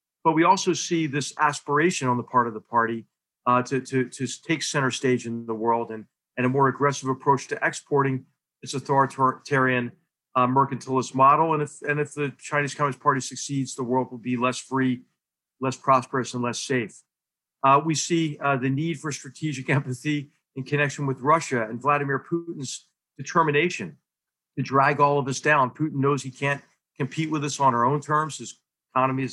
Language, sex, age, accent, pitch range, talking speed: English, male, 50-69, American, 125-145 Hz, 190 wpm